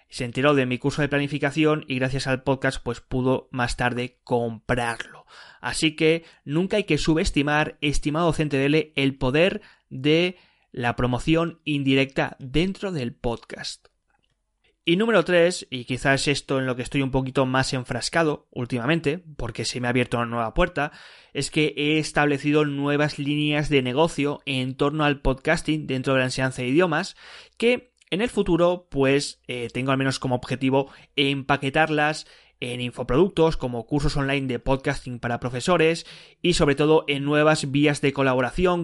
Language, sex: Spanish, male